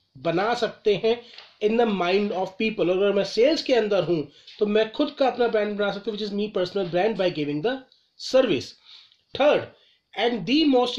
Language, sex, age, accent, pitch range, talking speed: Hindi, male, 30-49, native, 190-240 Hz, 175 wpm